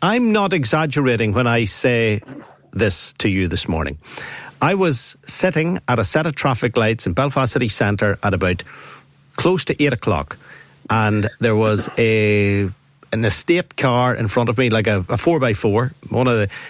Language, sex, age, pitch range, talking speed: English, male, 50-69, 120-170 Hz, 180 wpm